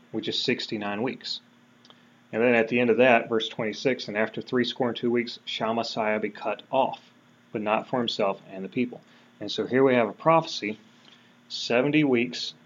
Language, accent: English, American